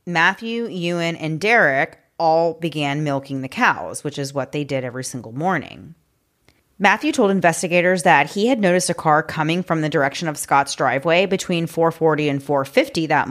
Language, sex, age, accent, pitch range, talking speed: English, female, 30-49, American, 145-175 Hz, 170 wpm